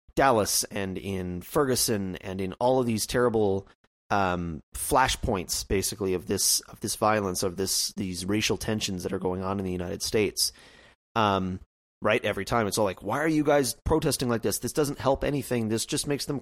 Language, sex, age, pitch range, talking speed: English, male, 30-49, 95-120 Hz, 195 wpm